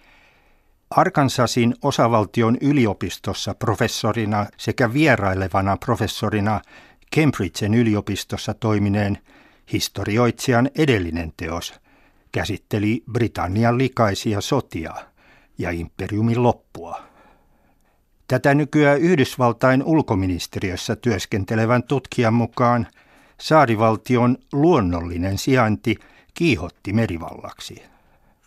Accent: native